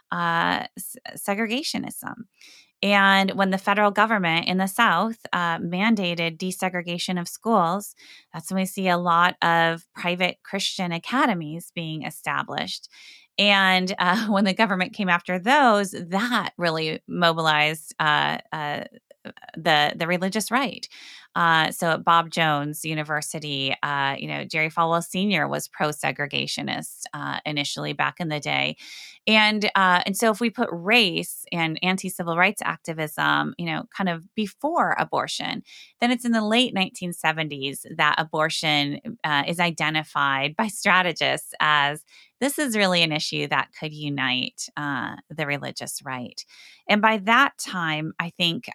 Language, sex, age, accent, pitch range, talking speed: English, female, 20-39, American, 155-200 Hz, 140 wpm